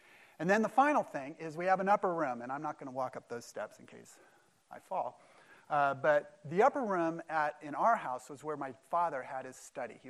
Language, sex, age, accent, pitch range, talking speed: English, male, 40-59, American, 130-165 Hz, 240 wpm